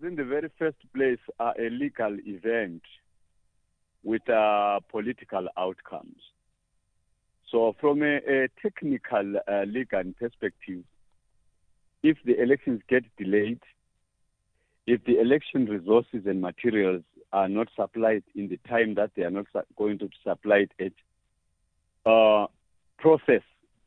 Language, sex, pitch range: English, male, 95-125 Hz